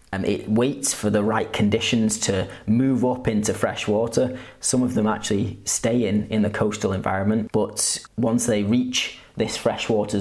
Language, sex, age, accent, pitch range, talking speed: English, male, 20-39, British, 95-110 Hz, 170 wpm